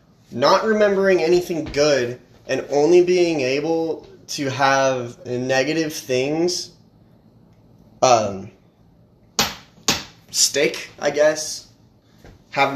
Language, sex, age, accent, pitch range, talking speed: English, male, 20-39, American, 145-210 Hz, 80 wpm